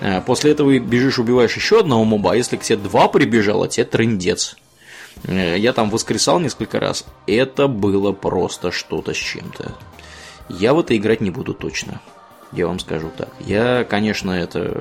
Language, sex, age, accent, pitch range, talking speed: Russian, male, 20-39, native, 95-135 Hz, 160 wpm